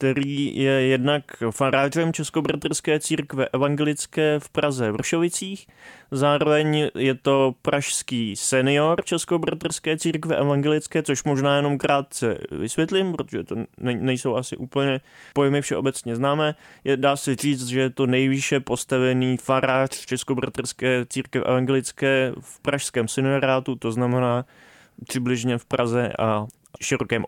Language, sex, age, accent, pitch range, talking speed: Czech, male, 20-39, native, 130-150 Hz, 120 wpm